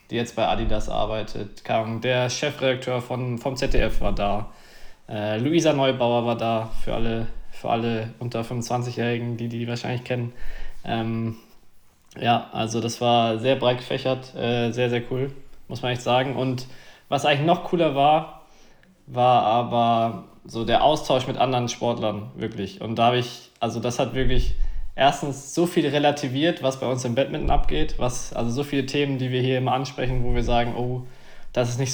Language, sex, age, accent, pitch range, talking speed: German, male, 20-39, German, 115-135 Hz, 175 wpm